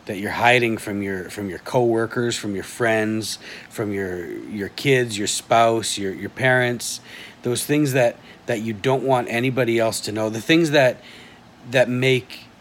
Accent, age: American, 40-59